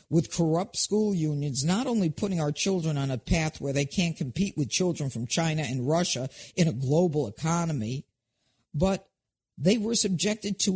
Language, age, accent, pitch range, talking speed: English, 50-69, American, 150-190 Hz, 175 wpm